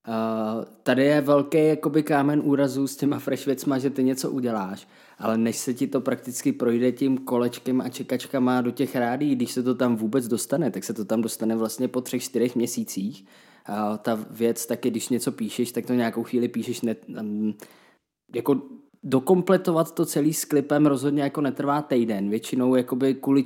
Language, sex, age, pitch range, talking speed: Czech, male, 20-39, 120-145 Hz, 185 wpm